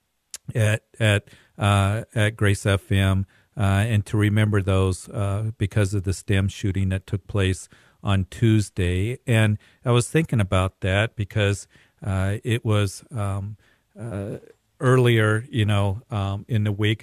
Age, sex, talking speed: 40-59, male, 145 wpm